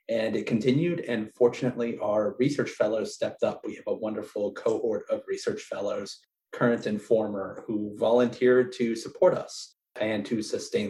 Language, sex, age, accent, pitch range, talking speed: English, male, 30-49, American, 115-145 Hz, 160 wpm